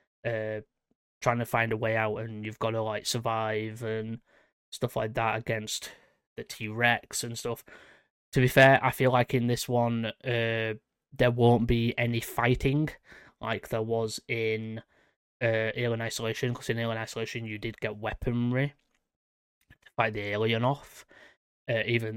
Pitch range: 110-125 Hz